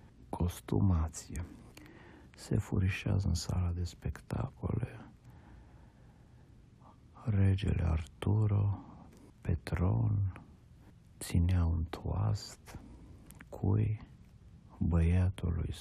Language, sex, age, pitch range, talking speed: Romanian, male, 50-69, 85-105 Hz, 60 wpm